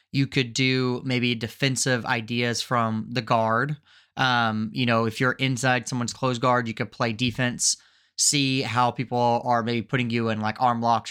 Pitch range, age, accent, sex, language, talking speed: 115-130 Hz, 30-49, American, male, English, 180 wpm